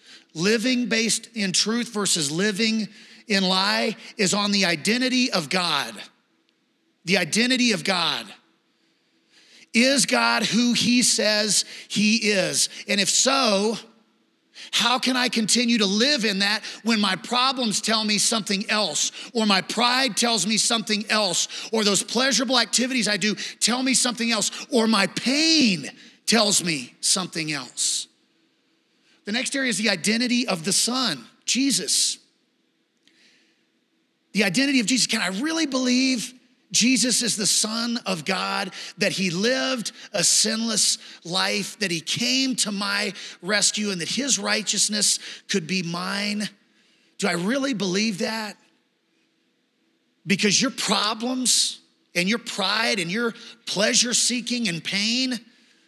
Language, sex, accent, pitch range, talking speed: English, male, American, 200-245 Hz, 135 wpm